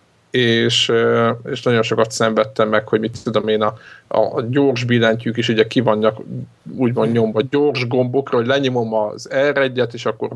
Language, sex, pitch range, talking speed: Hungarian, male, 110-125 Hz, 160 wpm